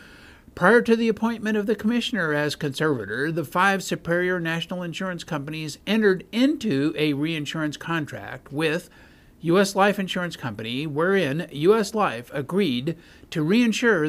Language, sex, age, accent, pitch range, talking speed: English, male, 50-69, American, 145-185 Hz, 130 wpm